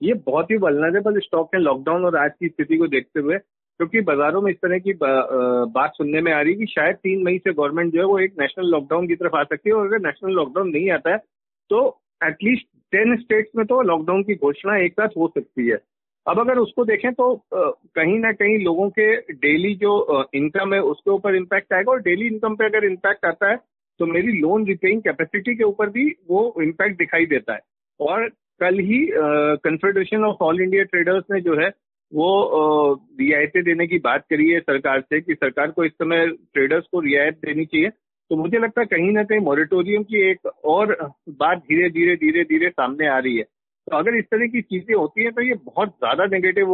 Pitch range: 160-215 Hz